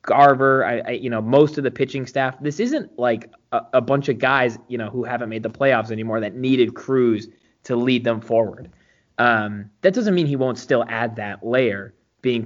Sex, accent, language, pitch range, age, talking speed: male, American, English, 110-140 Hz, 20-39, 210 wpm